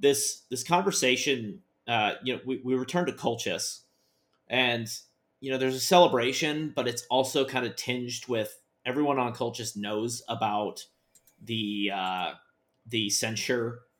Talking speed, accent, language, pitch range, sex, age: 140 wpm, American, English, 110-130 Hz, male, 30-49